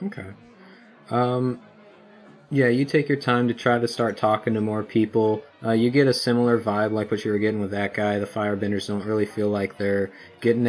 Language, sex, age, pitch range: English, male, 30-49, 105-120 Hz